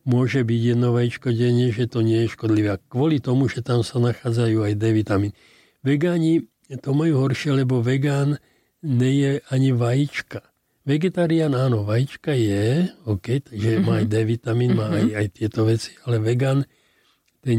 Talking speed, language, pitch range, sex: 155 wpm, Slovak, 115-135 Hz, male